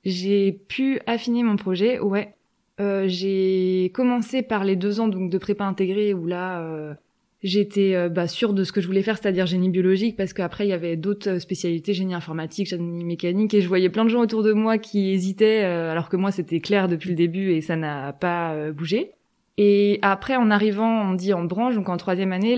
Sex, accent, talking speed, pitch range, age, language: female, French, 220 wpm, 180-220 Hz, 20-39, French